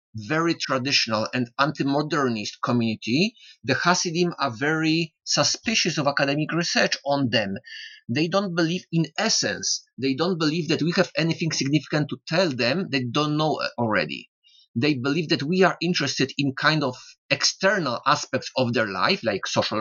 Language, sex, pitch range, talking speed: English, male, 130-180 Hz, 155 wpm